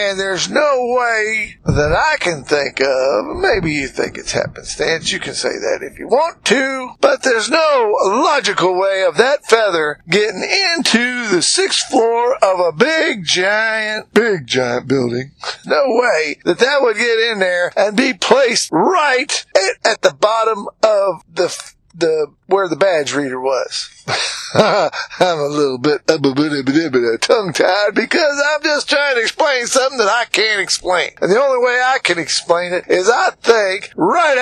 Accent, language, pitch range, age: American, English, 185-285 Hz, 50-69